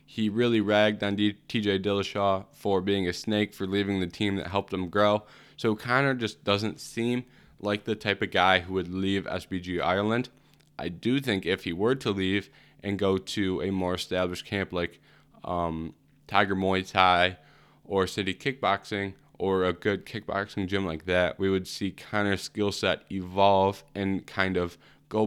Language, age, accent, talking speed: English, 20-39, American, 180 wpm